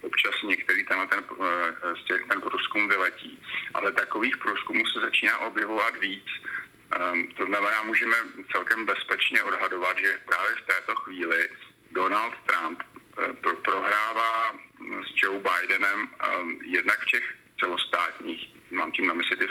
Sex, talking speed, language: male, 140 wpm, Slovak